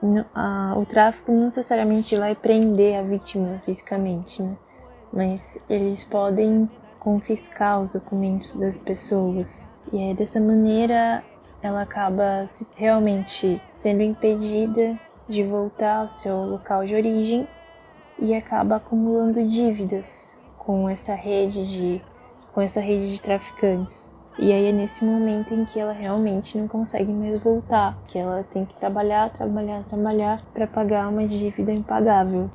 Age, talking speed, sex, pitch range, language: 20-39, 135 wpm, female, 195-220 Hz, Portuguese